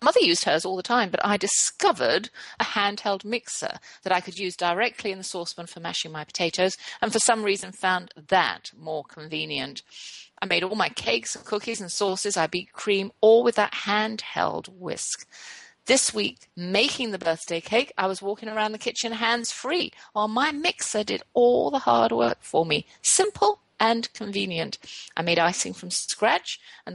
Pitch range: 170-225 Hz